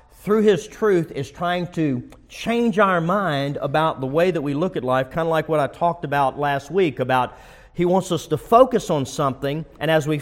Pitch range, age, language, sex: 150-205 Hz, 40-59, English, male